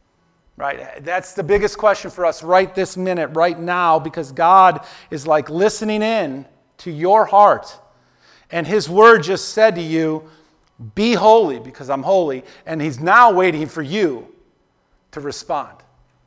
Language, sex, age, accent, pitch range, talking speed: English, male, 40-59, American, 150-210 Hz, 150 wpm